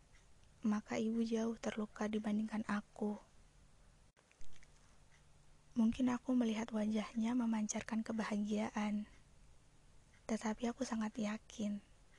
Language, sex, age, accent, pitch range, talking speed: Indonesian, female, 20-39, native, 210-230 Hz, 80 wpm